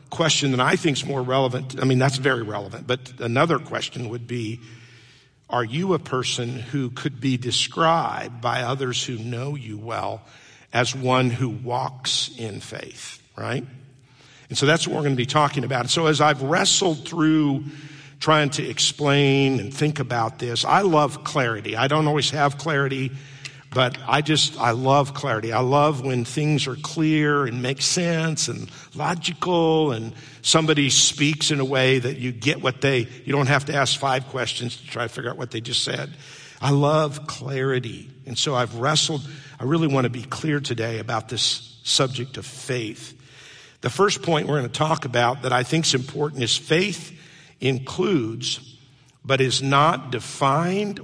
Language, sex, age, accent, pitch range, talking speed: English, male, 50-69, American, 125-150 Hz, 175 wpm